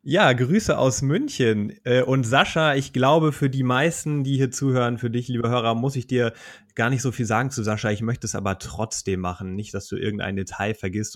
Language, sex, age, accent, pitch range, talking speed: German, male, 30-49, German, 110-135 Hz, 215 wpm